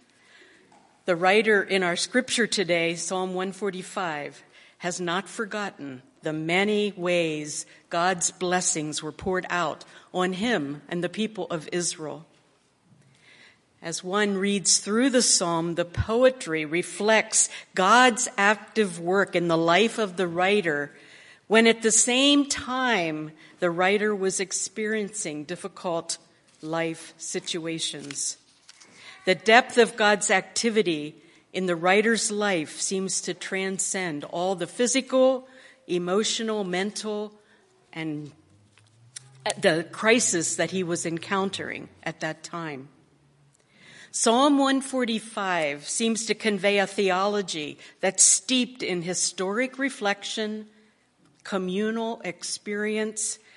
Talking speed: 110 wpm